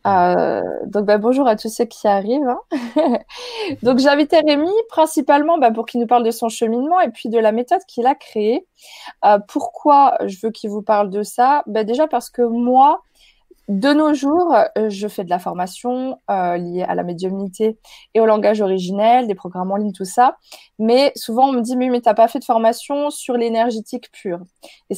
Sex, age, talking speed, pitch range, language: female, 20-39, 200 wpm, 195-255 Hz, French